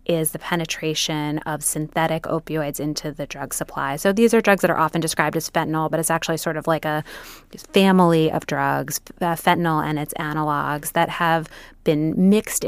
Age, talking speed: 30-49, 180 wpm